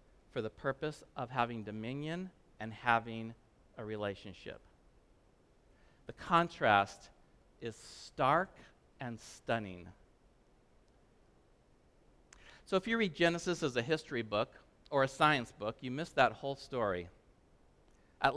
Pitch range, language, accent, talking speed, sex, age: 115-175 Hz, English, American, 115 wpm, male, 50-69